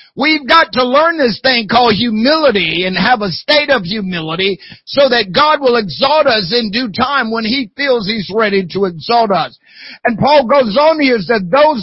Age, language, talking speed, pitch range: 50-69, English, 195 wpm, 225-285 Hz